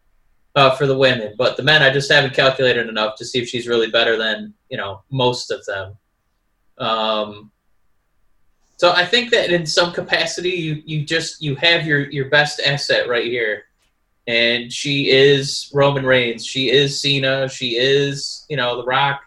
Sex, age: male, 20-39